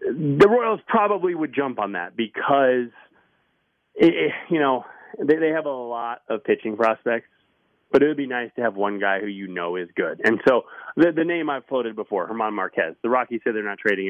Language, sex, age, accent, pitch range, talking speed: English, male, 30-49, American, 110-160 Hz, 215 wpm